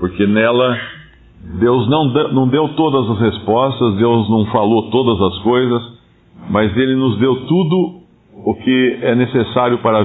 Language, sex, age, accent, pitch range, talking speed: Portuguese, male, 50-69, Brazilian, 95-120 Hz, 155 wpm